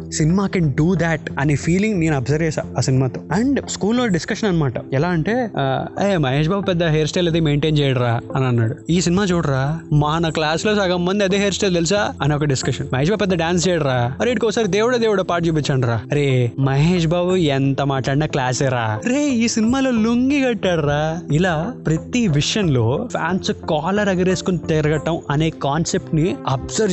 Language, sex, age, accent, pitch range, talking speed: Telugu, male, 20-39, native, 140-190 Hz, 170 wpm